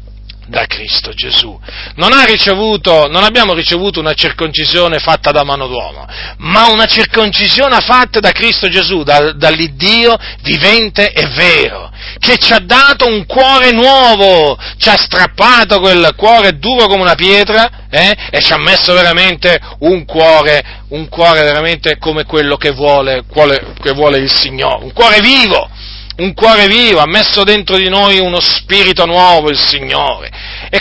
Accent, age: native, 40-59